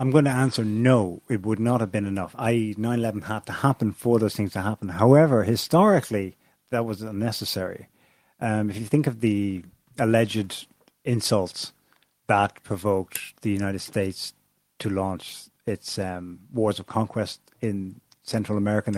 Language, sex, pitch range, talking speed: English, male, 105-130 Hz, 160 wpm